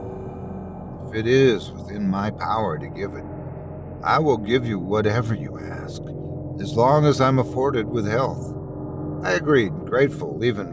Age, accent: 60-79, American